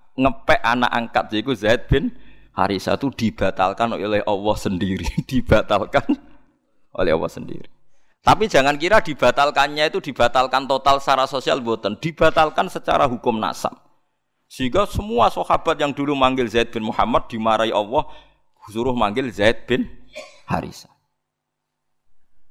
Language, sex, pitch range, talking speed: Indonesian, male, 105-140 Hz, 125 wpm